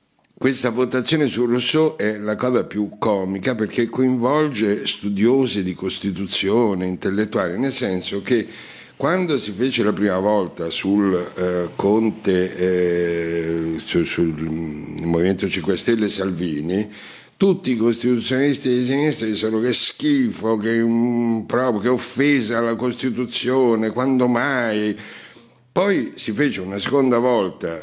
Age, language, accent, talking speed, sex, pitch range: 60-79, Italian, native, 125 wpm, male, 95-125 Hz